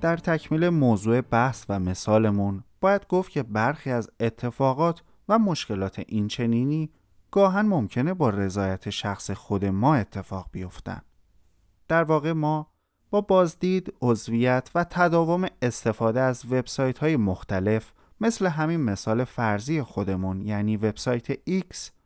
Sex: male